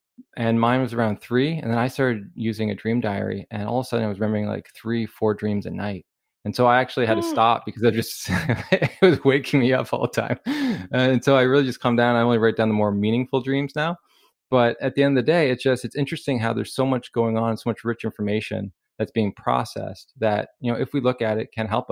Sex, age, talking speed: male, 20-39, 260 wpm